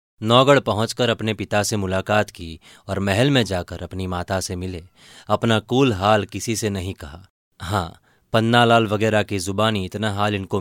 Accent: native